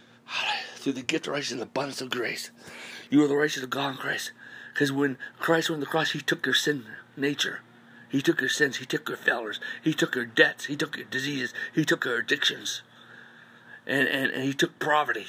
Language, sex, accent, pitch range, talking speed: English, male, American, 120-160 Hz, 210 wpm